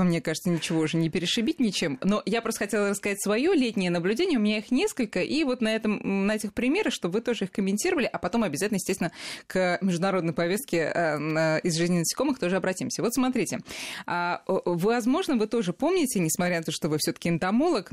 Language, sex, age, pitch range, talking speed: Russian, female, 20-39, 165-225 Hz, 185 wpm